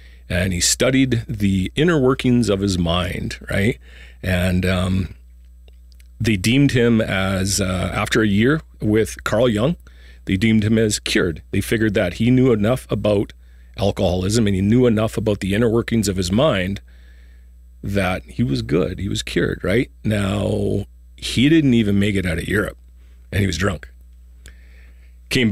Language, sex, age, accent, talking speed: English, male, 40-59, American, 160 wpm